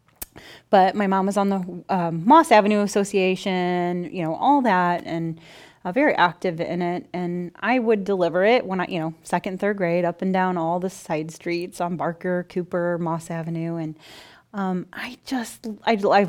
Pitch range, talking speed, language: 175-220 Hz, 185 wpm, English